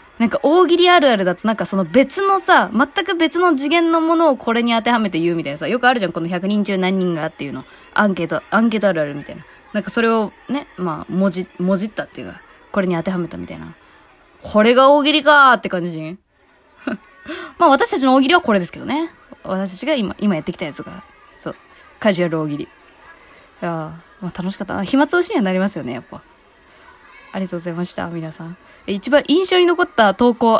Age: 20-39